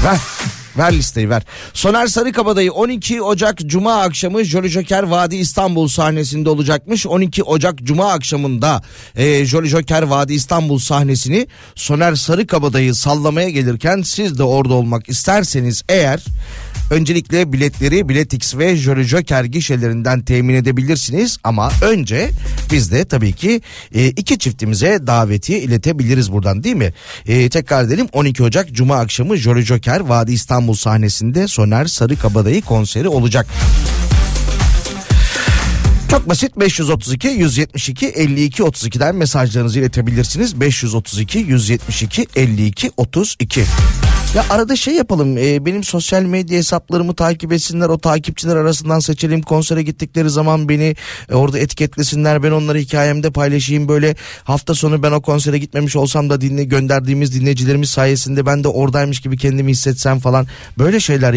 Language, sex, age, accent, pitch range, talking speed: Turkish, male, 40-59, native, 125-165 Hz, 130 wpm